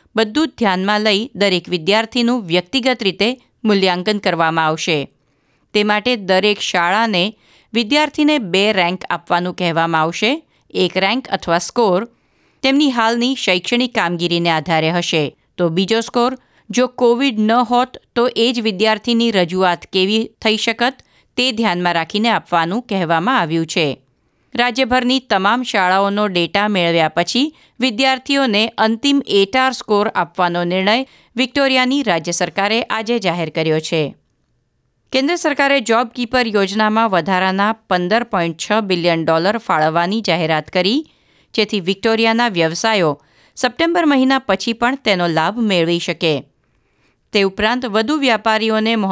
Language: Gujarati